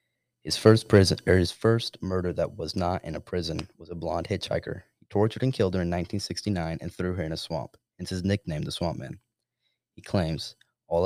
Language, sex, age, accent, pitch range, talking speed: English, male, 20-39, American, 90-110 Hz, 210 wpm